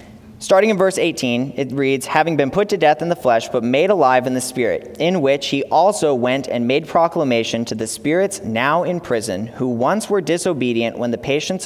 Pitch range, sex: 115-145 Hz, male